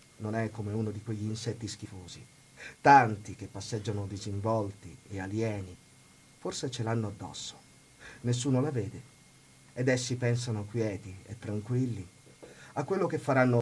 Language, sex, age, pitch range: Italian, male, 40-59, 105-135 Hz